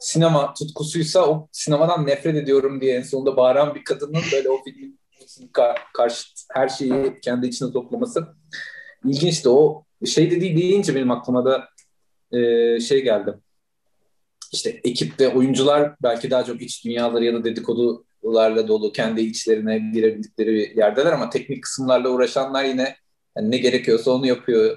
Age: 30-49